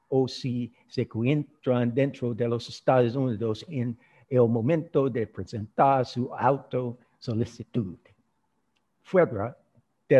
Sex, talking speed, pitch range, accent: male, 105 wpm, 110-135 Hz, American